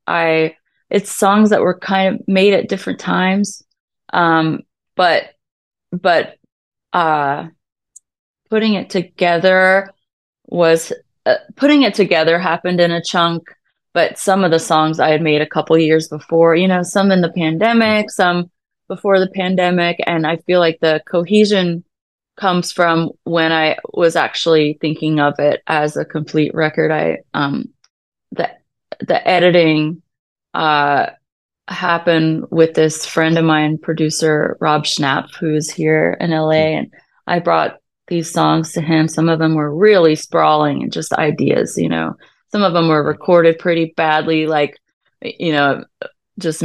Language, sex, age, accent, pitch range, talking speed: English, female, 30-49, American, 155-185 Hz, 150 wpm